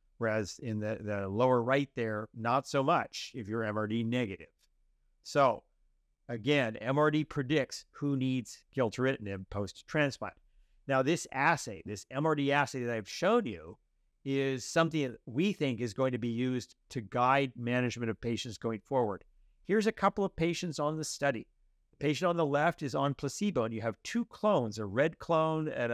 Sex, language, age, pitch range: male, English, 50-69, 110-145 Hz